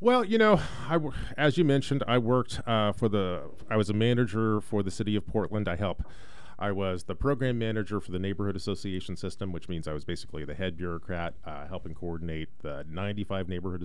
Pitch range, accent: 85-110 Hz, American